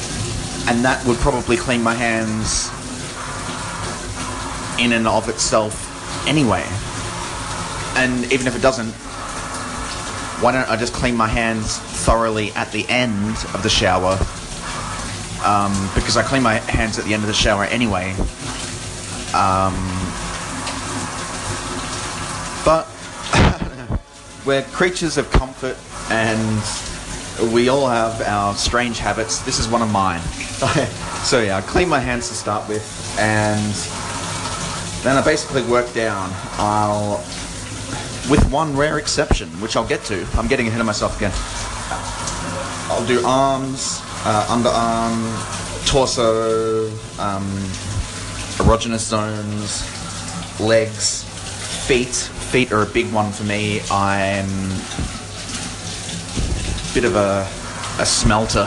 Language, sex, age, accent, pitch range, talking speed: English, male, 30-49, Australian, 95-120 Hz, 120 wpm